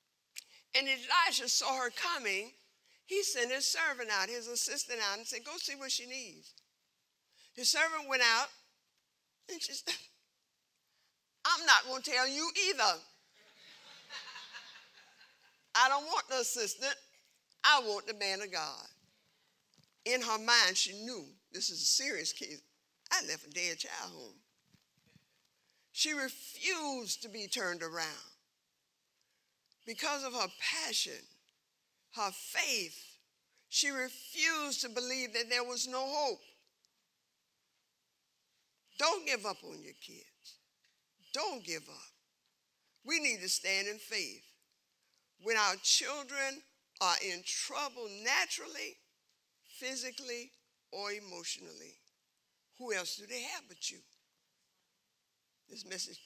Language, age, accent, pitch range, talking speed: English, 50-69, American, 210-275 Hz, 125 wpm